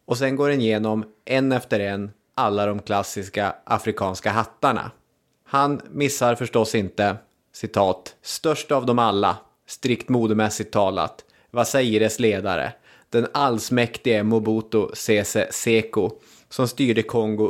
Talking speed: 125 wpm